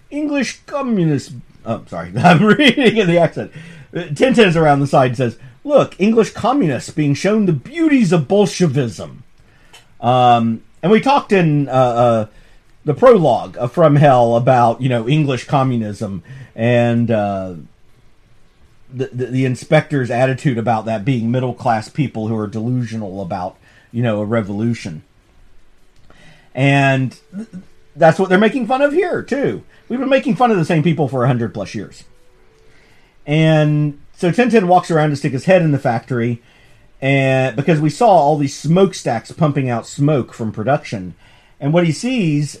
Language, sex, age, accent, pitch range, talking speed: English, male, 40-59, American, 120-175 Hz, 160 wpm